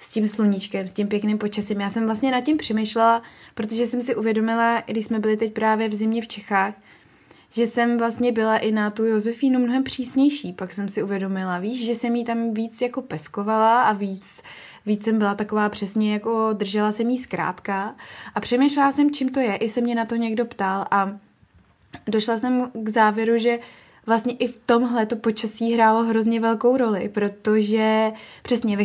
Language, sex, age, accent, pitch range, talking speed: Czech, female, 20-39, native, 210-235 Hz, 195 wpm